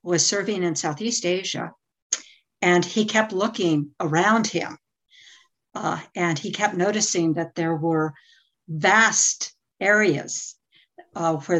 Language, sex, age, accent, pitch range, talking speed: English, female, 60-79, American, 170-200 Hz, 120 wpm